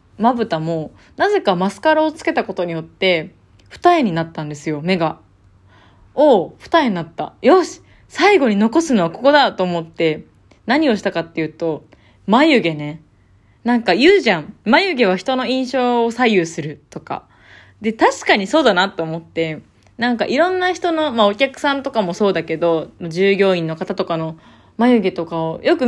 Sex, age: female, 20-39